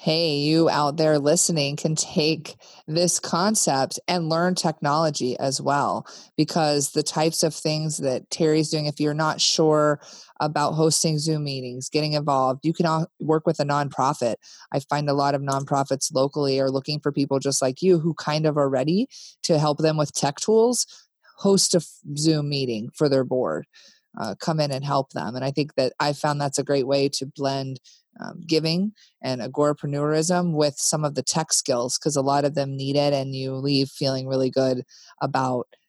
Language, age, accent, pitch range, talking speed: English, 30-49, American, 140-165 Hz, 185 wpm